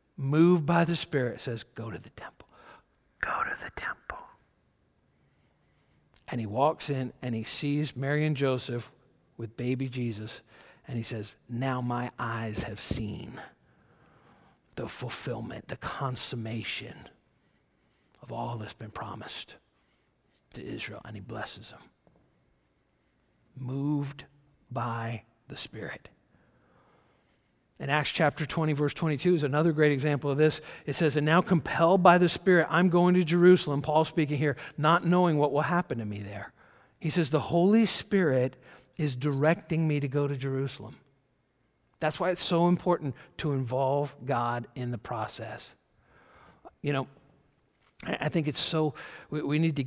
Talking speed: 145 wpm